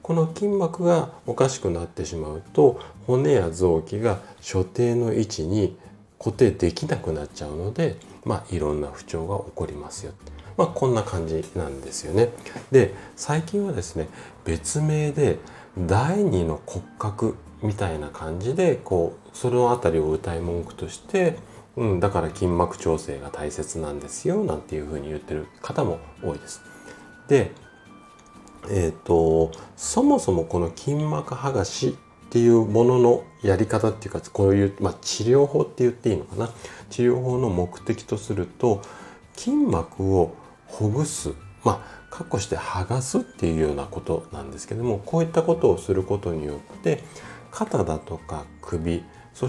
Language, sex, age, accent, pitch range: Japanese, male, 40-59, native, 85-125 Hz